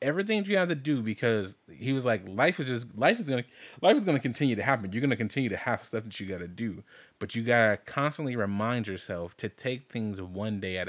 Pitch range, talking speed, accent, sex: 100-130 Hz, 235 wpm, American, male